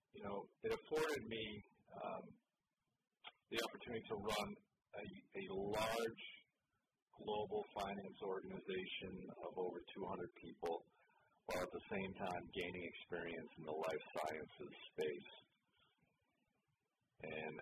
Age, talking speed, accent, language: 40-59, 110 wpm, American, English